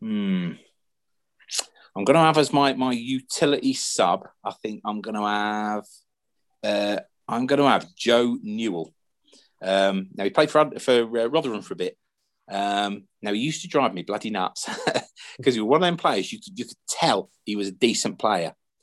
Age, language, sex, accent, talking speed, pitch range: 30-49, English, male, British, 190 wpm, 105-145 Hz